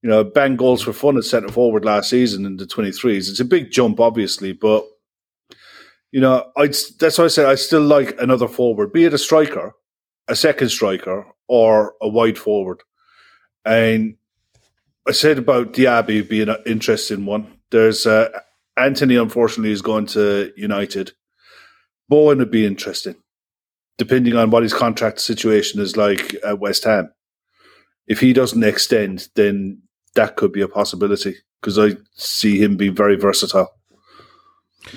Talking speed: 155 wpm